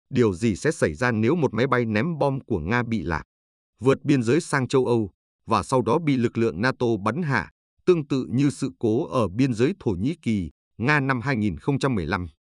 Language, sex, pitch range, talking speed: Vietnamese, male, 105-135 Hz, 210 wpm